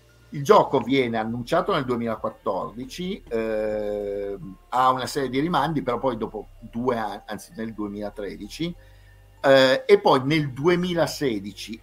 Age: 50-69